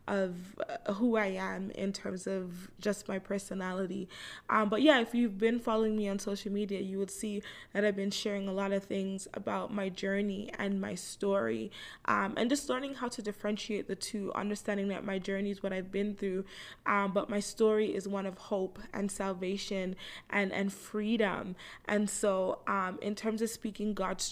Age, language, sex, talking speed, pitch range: 20-39, English, female, 190 wpm, 195-220 Hz